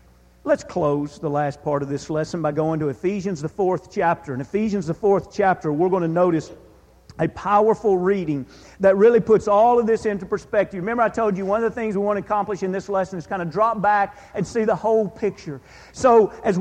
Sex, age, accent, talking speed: male, 40-59, American, 225 wpm